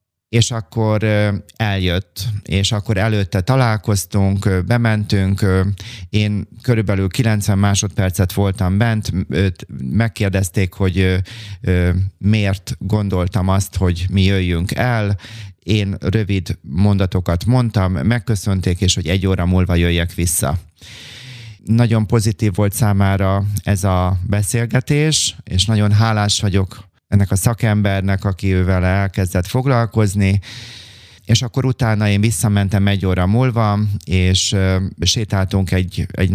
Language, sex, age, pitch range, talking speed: Hungarian, male, 30-49, 95-110 Hz, 110 wpm